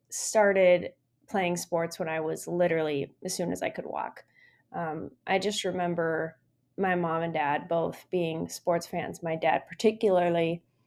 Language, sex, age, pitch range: English, female, 20-39, 160-185 Hz